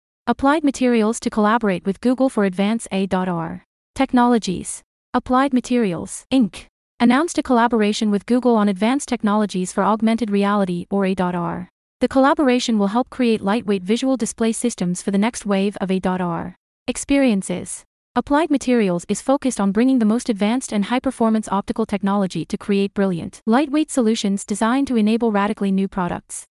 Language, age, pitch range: English, 30-49, 200-245 Hz